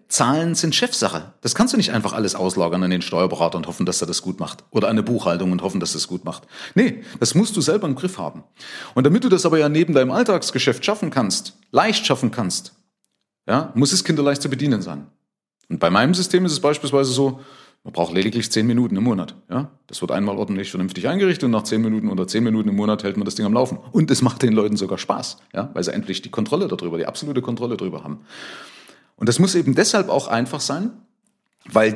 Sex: male